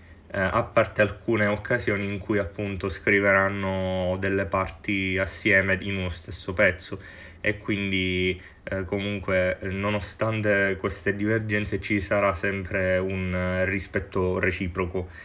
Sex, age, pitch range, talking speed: male, 20-39, 90-100 Hz, 115 wpm